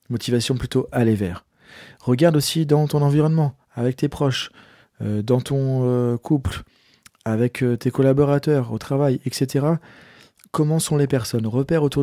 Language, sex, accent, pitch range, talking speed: French, male, French, 120-140 Hz, 150 wpm